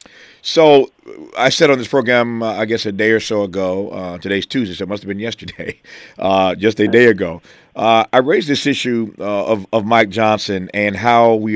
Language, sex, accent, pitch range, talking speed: English, male, American, 105-125 Hz, 215 wpm